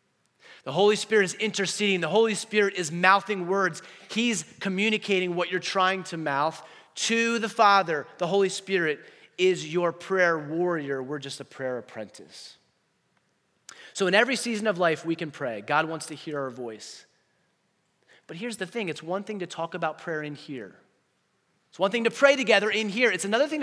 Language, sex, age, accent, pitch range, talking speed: English, male, 30-49, American, 150-205 Hz, 185 wpm